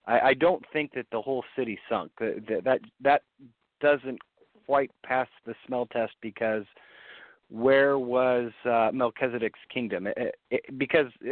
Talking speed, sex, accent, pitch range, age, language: 145 wpm, male, American, 115-140 Hz, 40-59, English